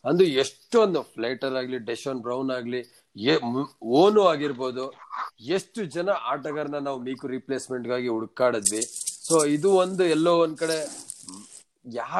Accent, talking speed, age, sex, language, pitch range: Indian, 135 wpm, 40-59, male, English, 130-165 Hz